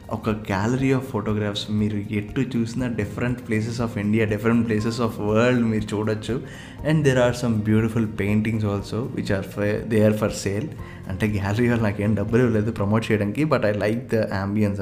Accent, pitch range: native, 105-120 Hz